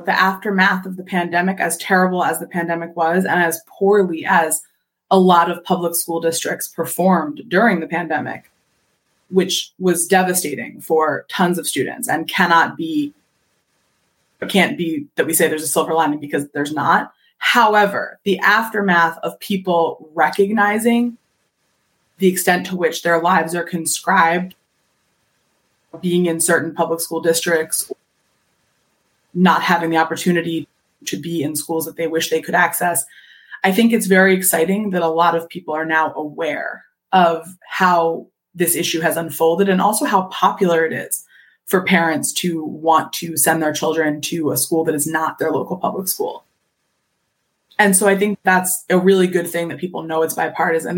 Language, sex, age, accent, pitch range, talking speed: English, female, 20-39, American, 165-190 Hz, 165 wpm